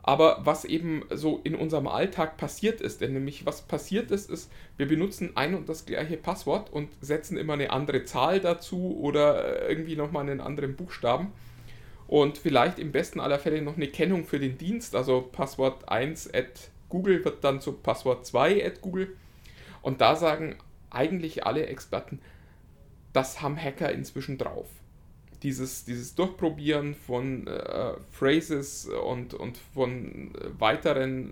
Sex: male